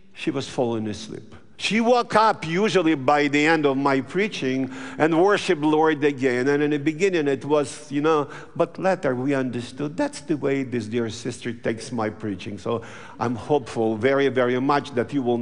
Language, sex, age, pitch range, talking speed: English, male, 50-69, 125-195 Hz, 185 wpm